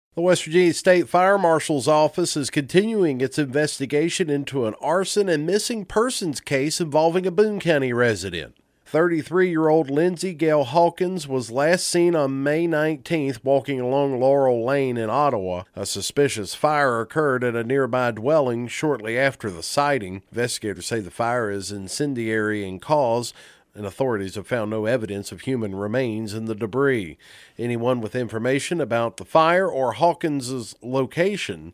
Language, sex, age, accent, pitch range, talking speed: English, male, 40-59, American, 120-165 Hz, 150 wpm